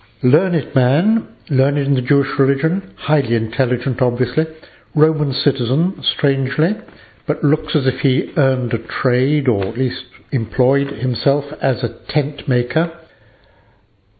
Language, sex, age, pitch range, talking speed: English, male, 60-79, 115-145 Hz, 125 wpm